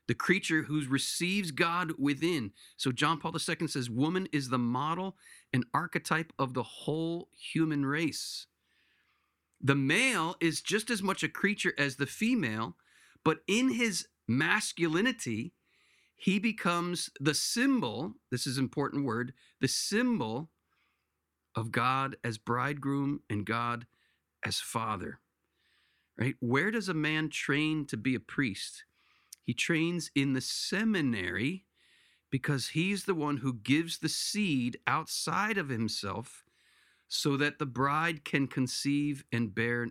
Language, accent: English, American